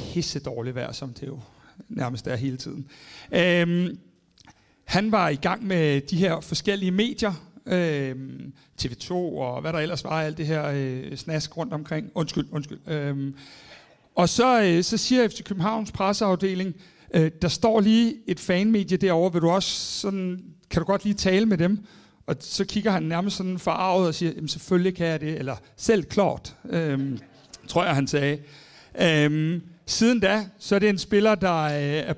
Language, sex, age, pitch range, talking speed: Danish, male, 60-79, 155-195 Hz, 175 wpm